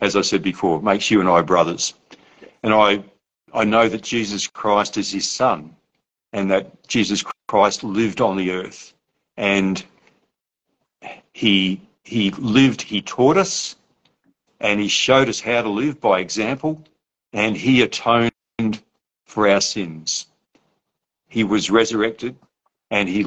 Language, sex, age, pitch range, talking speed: English, male, 60-79, 100-120 Hz, 140 wpm